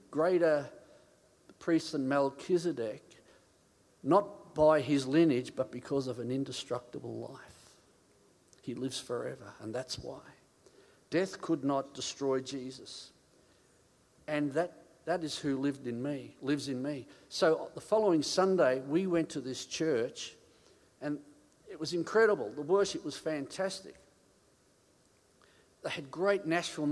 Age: 50-69